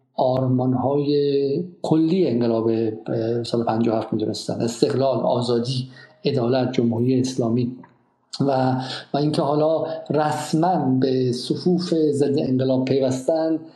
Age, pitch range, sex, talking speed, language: 50-69, 125-150 Hz, male, 100 wpm, Persian